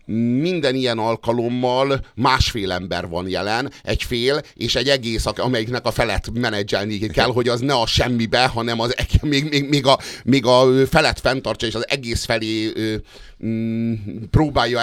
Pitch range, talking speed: 100-125 Hz, 150 wpm